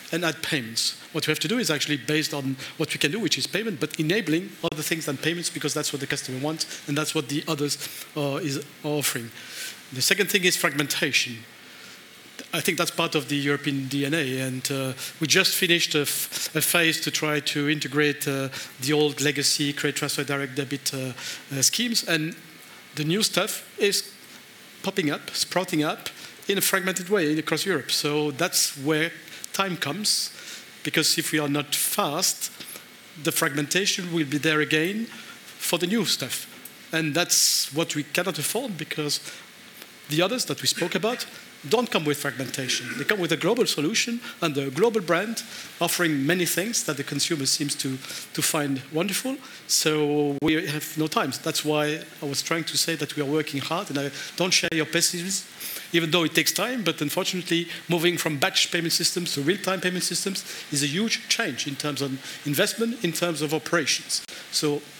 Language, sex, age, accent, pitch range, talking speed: English, male, 50-69, French, 145-175 Hz, 185 wpm